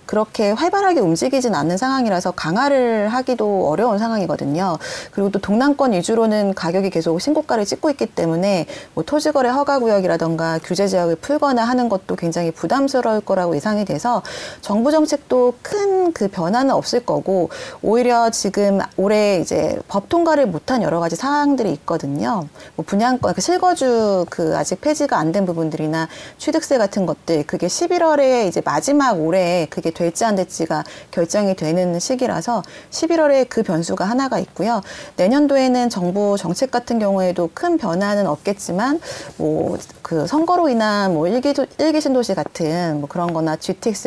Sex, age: female, 30-49